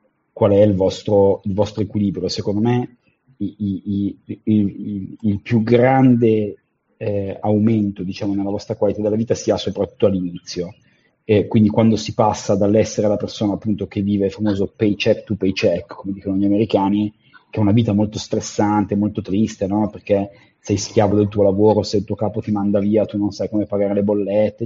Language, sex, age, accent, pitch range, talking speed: Italian, male, 30-49, native, 100-110 Hz, 190 wpm